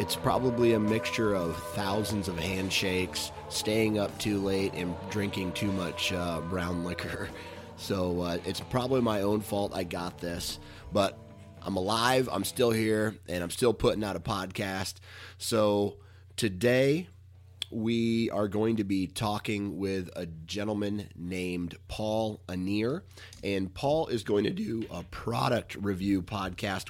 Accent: American